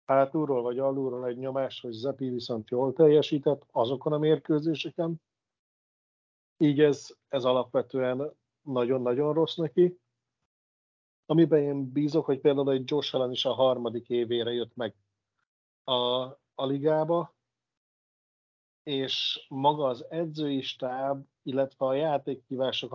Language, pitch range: Hungarian, 125-145 Hz